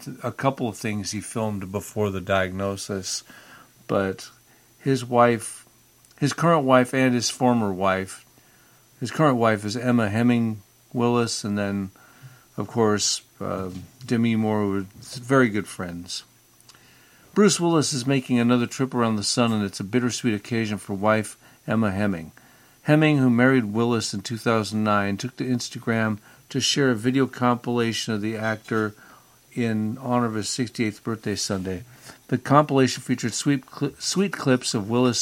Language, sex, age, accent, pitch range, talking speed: English, male, 50-69, American, 105-125 Hz, 150 wpm